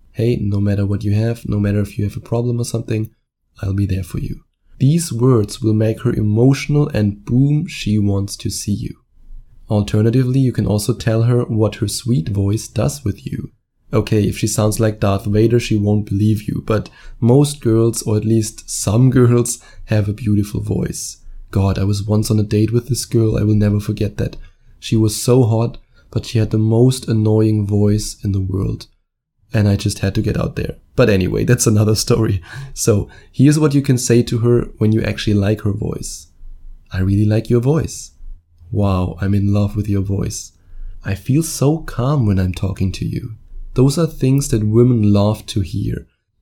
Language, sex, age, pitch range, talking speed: English, male, 20-39, 100-120 Hz, 200 wpm